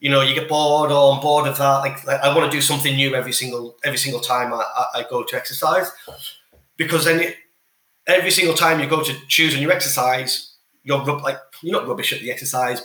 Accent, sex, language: British, male, English